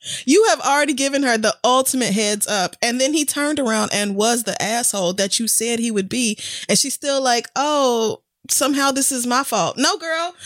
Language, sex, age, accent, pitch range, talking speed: English, female, 20-39, American, 190-270 Hz, 205 wpm